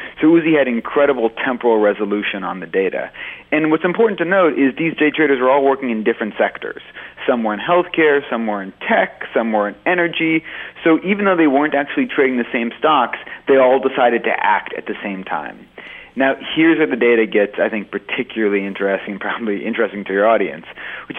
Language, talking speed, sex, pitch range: English, 200 wpm, male, 115-140 Hz